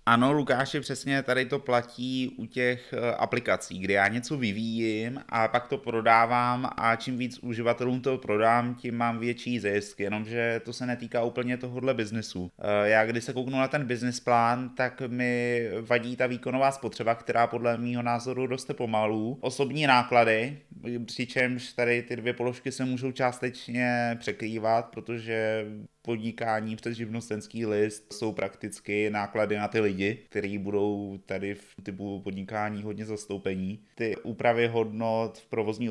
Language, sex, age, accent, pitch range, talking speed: Czech, male, 20-39, native, 105-120 Hz, 145 wpm